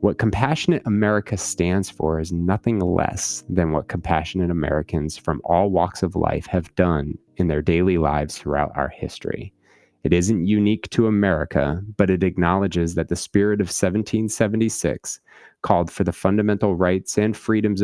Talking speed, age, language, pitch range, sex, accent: 155 wpm, 30-49, English, 80-100 Hz, male, American